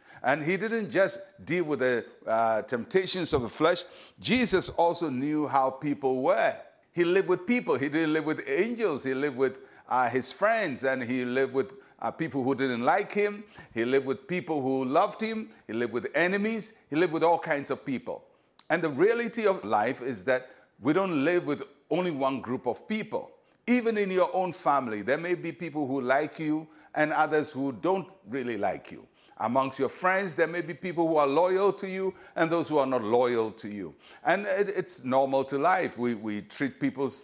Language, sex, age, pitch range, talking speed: English, male, 60-79, 130-185 Hz, 200 wpm